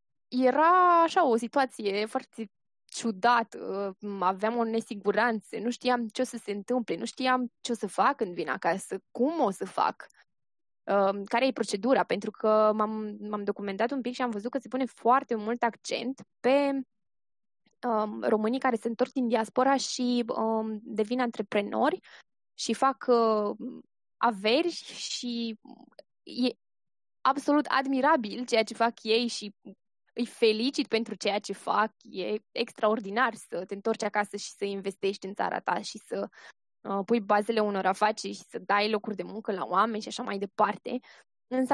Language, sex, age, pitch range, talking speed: Romanian, female, 20-39, 210-255 Hz, 155 wpm